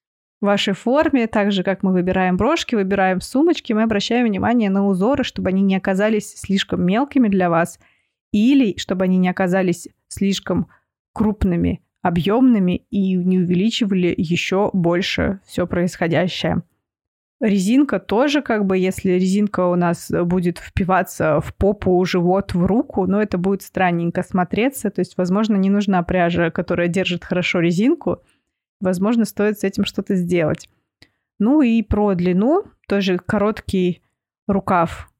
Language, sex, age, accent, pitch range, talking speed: Russian, female, 20-39, native, 180-215 Hz, 140 wpm